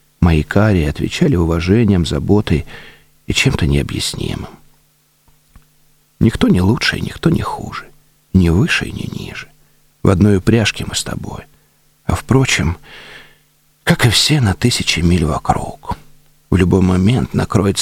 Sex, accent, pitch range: male, native, 85-110 Hz